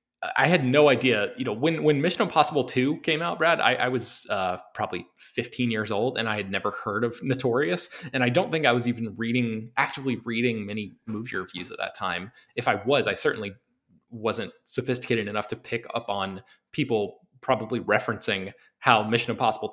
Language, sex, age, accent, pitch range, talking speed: English, male, 20-39, American, 110-130 Hz, 190 wpm